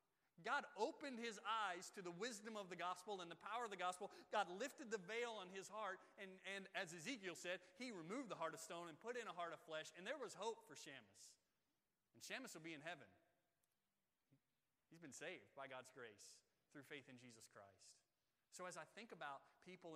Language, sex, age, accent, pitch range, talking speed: English, male, 30-49, American, 165-230 Hz, 210 wpm